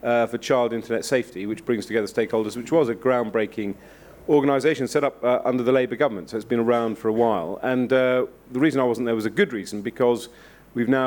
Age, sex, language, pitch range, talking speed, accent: 40-59, male, English, 105-120 Hz, 230 wpm, British